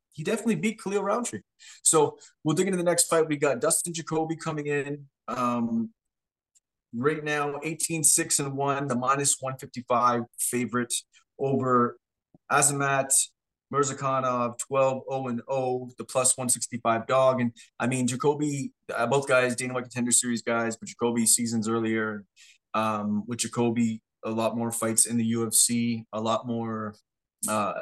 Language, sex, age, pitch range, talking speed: English, male, 20-39, 115-135 Hz, 135 wpm